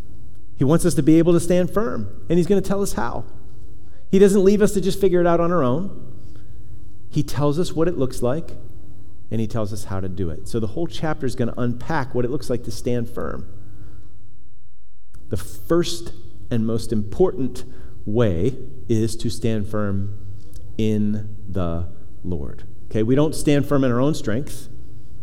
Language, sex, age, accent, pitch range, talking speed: English, male, 40-59, American, 100-135 Hz, 190 wpm